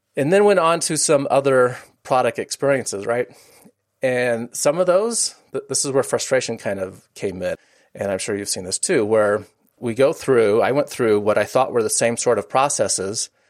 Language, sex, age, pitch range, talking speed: English, male, 30-49, 105-140 Hz, 200 wpm